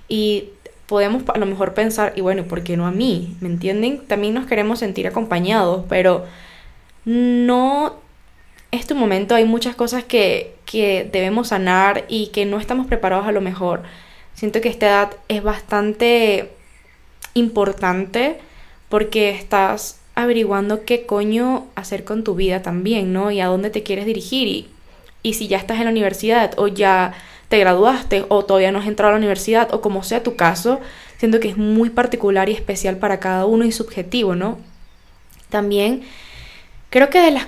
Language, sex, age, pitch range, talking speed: Spanish, female, 10-29, 200-240 Hz, 170 wpm